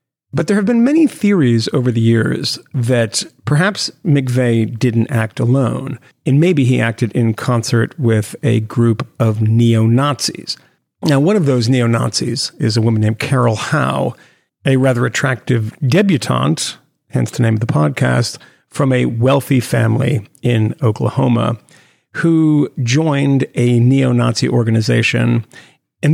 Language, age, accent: English, 50-69, American